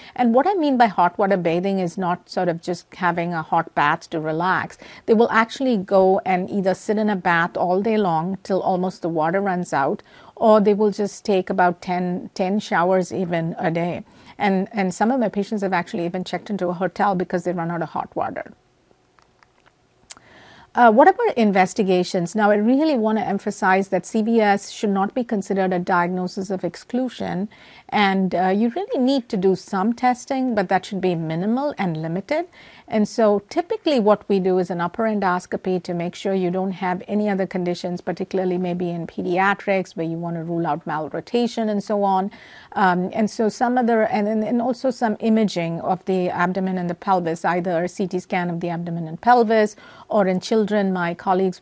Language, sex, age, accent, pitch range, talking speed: English, female, 50-69, Indian, 175-215 Hz, 195 wpm